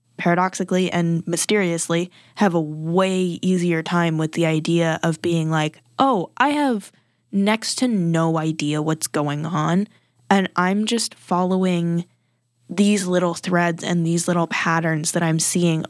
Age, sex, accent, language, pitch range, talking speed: 10-29, female, American, English, 165-185 Hz, 145 wpm